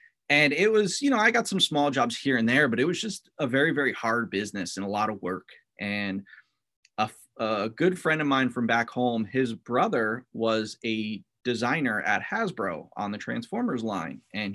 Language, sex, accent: English, male, American